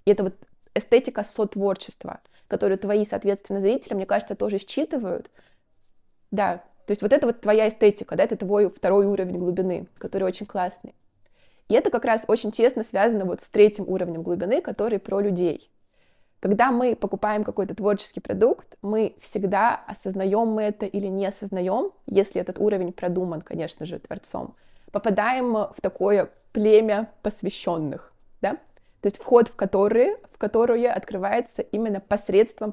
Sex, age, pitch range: female, 20-39, 190-215 Hz